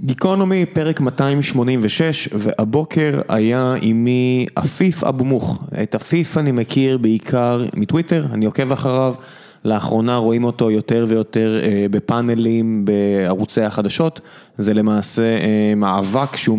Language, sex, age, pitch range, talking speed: Hebrew, male, 20-39, 110-135 Hz, 110 wpm